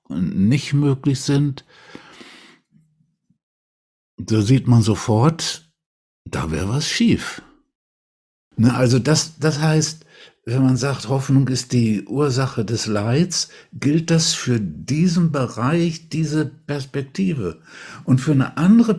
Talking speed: 110 wpm